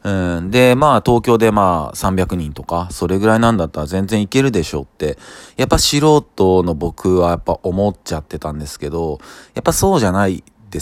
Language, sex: Japanese, male